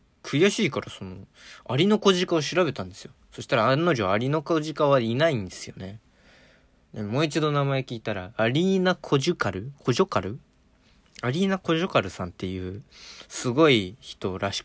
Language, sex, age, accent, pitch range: Japanese, male, 20-39, native, 100-140 Hz